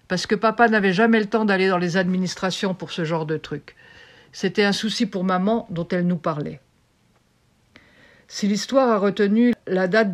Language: French